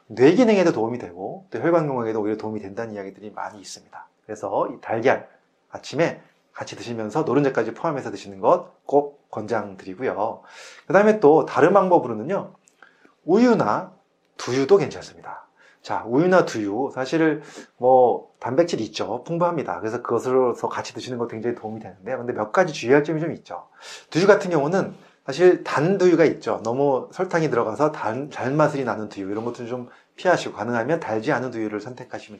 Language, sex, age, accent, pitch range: Korean, male, 30-49, native, 115-170 Hz